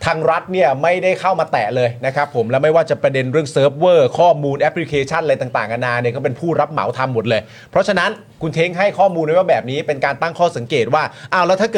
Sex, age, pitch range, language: male, 30-49, 125-160 Hz, Thai